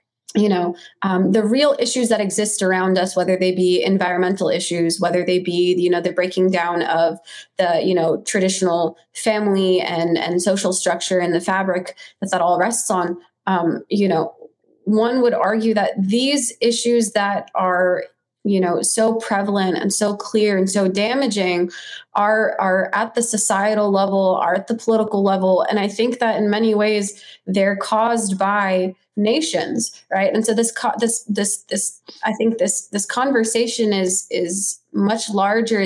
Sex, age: female, 20-39